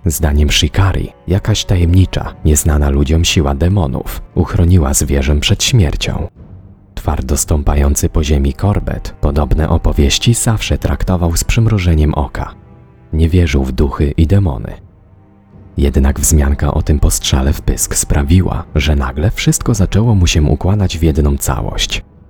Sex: male